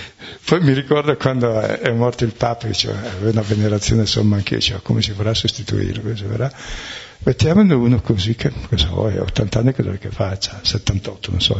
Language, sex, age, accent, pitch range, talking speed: Italian, male, 60-79, native, 105-125 Hz, 175 wpm